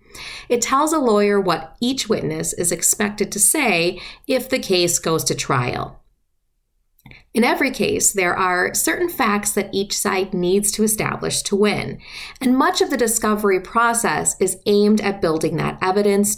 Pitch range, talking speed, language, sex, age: 185-250 Hz, 160 wpm, English, female, 30-49